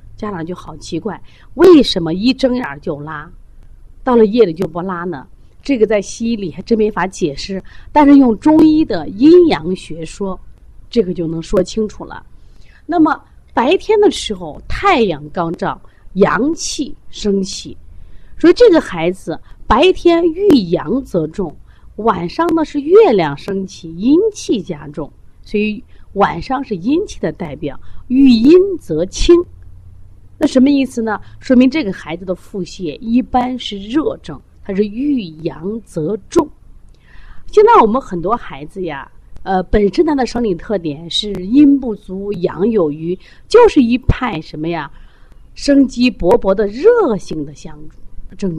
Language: Chinese